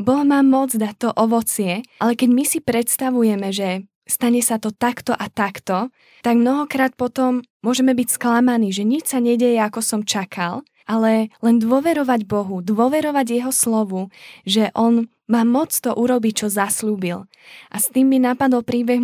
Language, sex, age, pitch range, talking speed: Slovak, female, 10-29, 215-245 Hz, 165 wpm